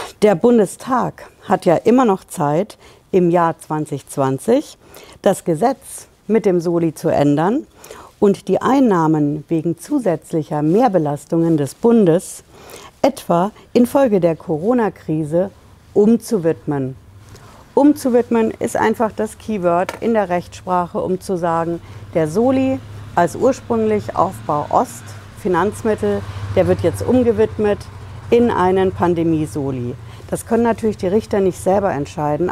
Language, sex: German, female